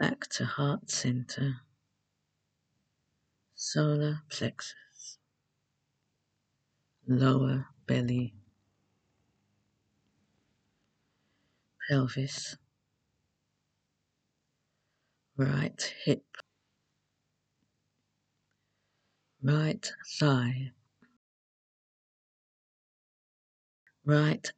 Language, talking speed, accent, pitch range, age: English, 35 wpm, British, 125-140 Hz, 50-69